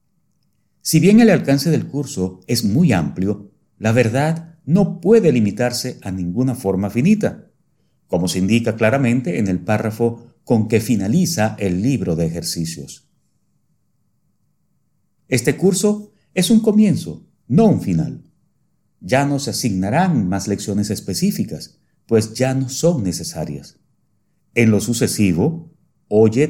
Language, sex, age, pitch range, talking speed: Spanish, male, 50-69, 95-145 Hz, 125 wpm